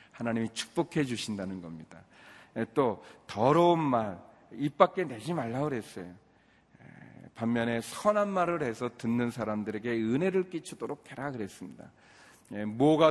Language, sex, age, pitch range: Korean, male, 40-59, 100-145 Hz